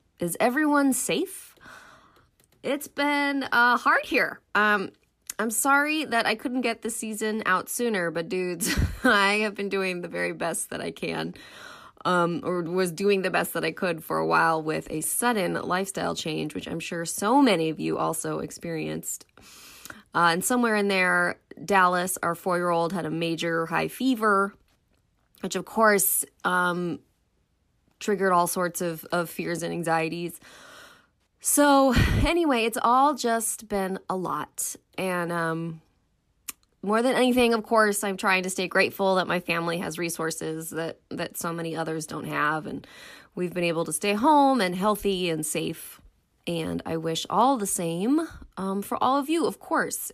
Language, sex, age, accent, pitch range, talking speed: English, female, 20-39, American, 170-235 Hz, 165 wpm